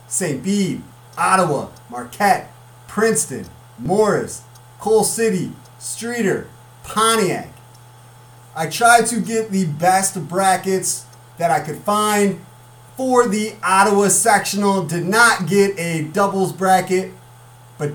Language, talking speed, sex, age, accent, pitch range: English, 105 wpm, male, 30-49, American, 155-210 Hz